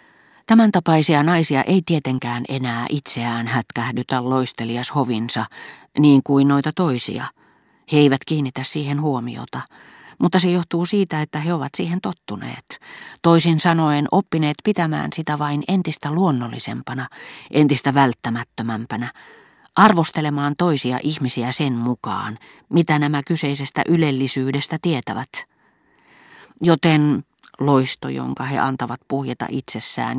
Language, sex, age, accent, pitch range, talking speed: Finnish, female, 40-59, native, 125-165 Hz, 105 wpm